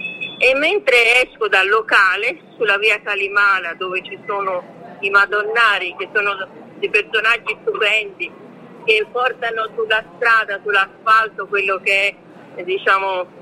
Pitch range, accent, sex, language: 185-280 Hz, native, female, Italian